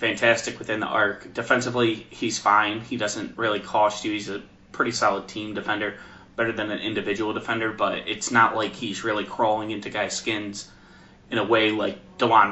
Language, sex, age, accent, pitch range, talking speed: English, male, 20-39, American, 105-120 Hz, 180 wpm